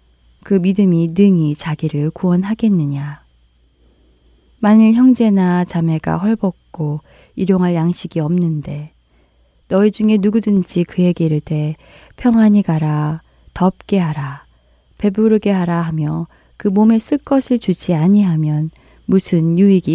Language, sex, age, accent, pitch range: Korean, female, 20-39, native, 150-205 Hz